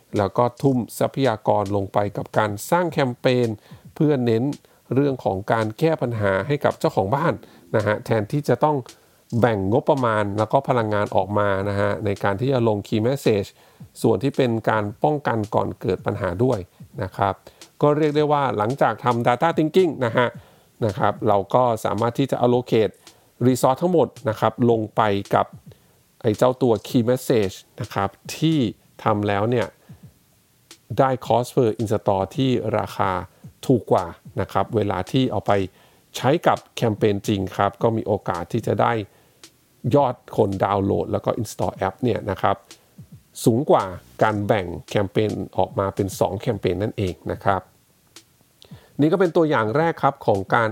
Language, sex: English, male